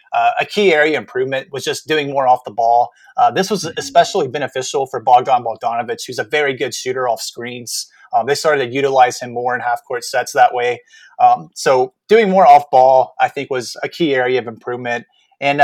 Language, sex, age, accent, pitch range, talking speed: English, male, 30-49, American, 125-165 Hz, 210 wpm